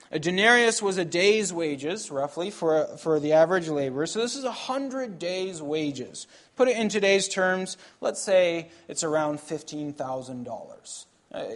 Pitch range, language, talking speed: 150-210 Hz, English, 155 wpm